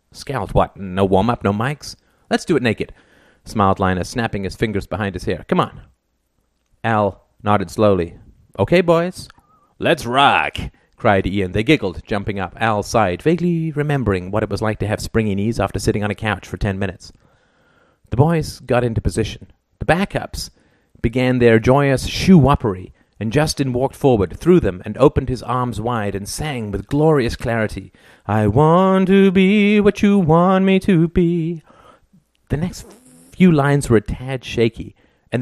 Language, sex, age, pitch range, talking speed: English, male, 30-49, 100-155 Hz, 170 wpm